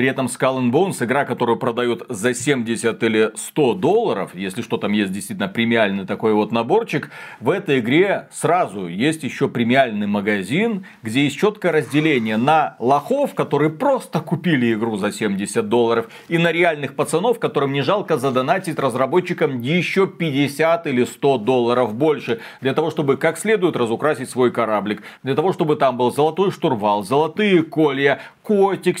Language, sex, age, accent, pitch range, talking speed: Russian, male, 40-59, native, 130-180 Hz, 155 wpm